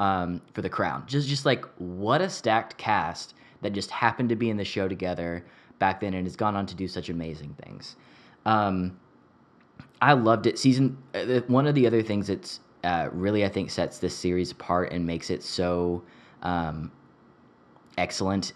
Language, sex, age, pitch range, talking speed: English, male, 20-39, 85-105 Hz, 180 wpm